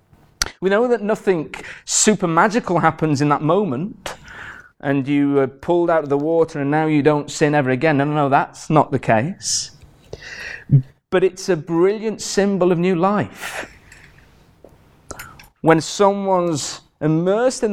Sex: male